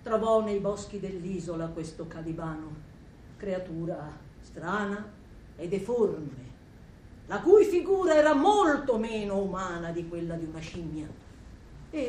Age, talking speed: 50-69, 115 wpm